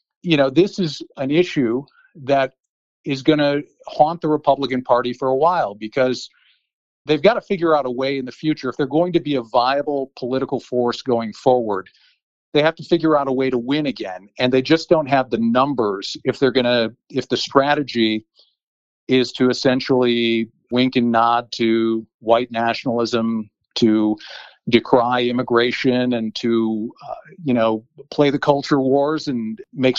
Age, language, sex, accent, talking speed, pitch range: 50-69, English, male, American, 170 wpm, 120-145 Hz